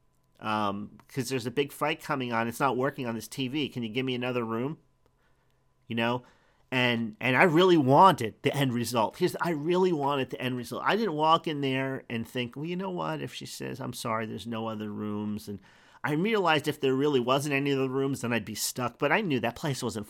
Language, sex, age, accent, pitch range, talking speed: English, male, 40-59, American, 125-160 Hz, 230 wpm